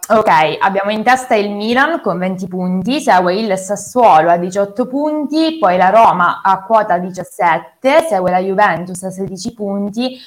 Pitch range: 180-240 Hz